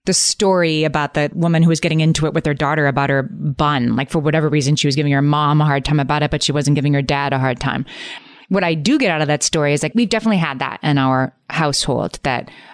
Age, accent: 30-49, American